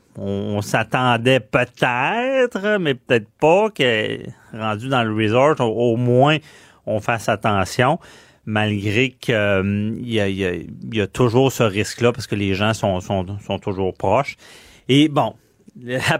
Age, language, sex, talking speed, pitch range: 40-59, French, male, 155 wpm, 105-135 Hz